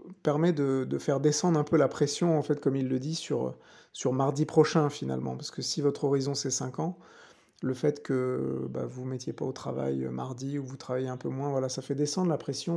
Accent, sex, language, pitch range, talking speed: French, male, French, 130-155 Hz, 245 wpm